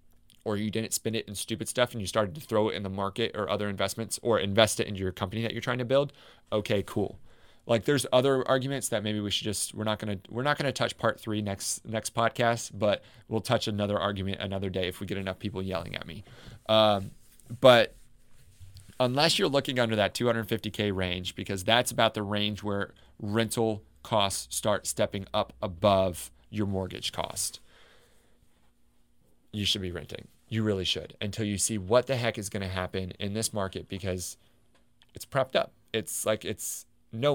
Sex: male